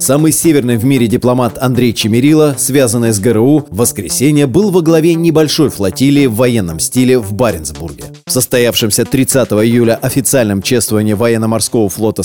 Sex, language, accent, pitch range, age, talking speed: male, Russian, native, 115-140 Hz, 30-49, 145 wpm